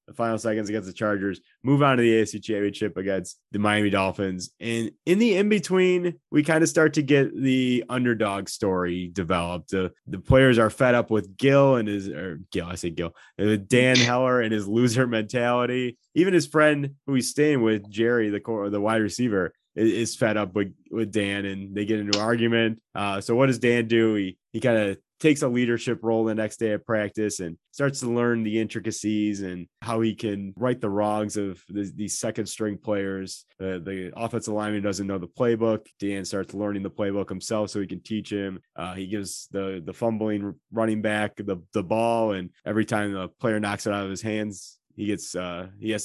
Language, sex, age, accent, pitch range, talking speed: English, male, 20-39, American, 100-120 Hz, 210 wpm